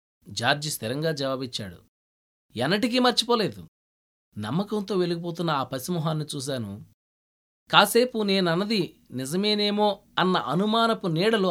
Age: 20-39